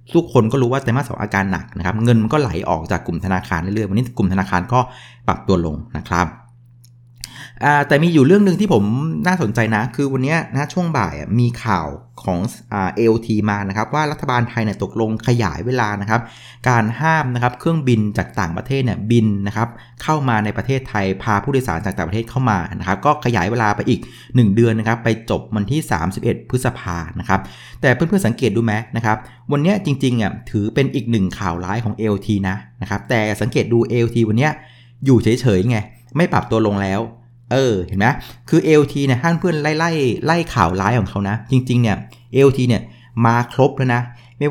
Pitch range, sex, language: 105-130 Hz, male, Thai